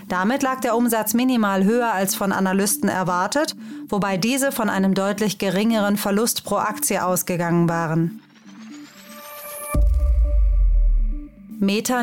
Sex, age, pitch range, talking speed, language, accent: female, 30-49, 195-235 Hz, 110 wpm, German, German